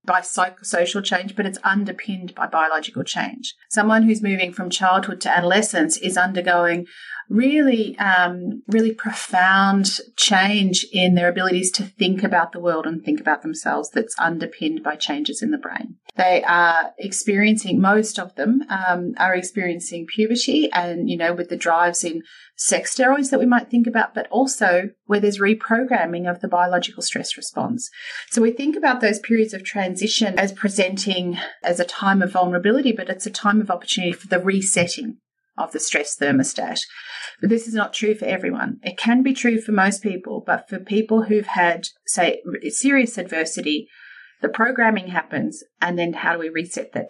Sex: female